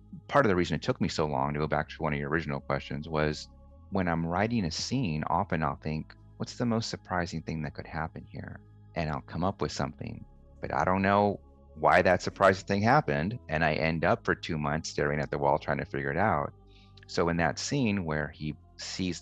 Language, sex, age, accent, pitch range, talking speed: English, male, 30-49, American, 75-95 Hz, 230 wpm